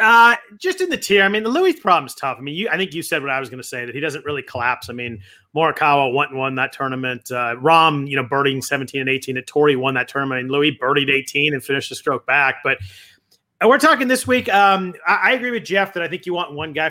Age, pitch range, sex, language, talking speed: 30-49, 135-175 Hz, male, English, 275 wpm